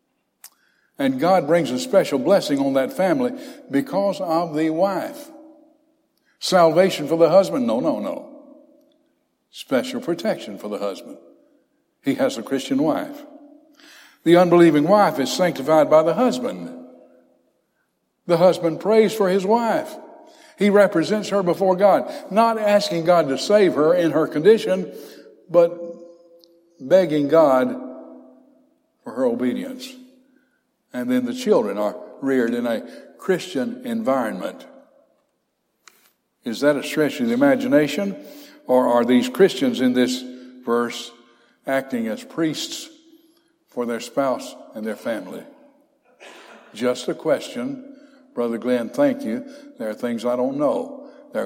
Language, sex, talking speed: English, male, 130 wpm